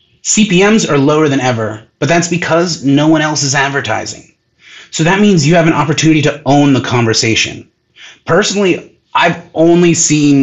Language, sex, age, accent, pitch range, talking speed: English, male, 30-49, American, 125-160 Hz, 160 wpm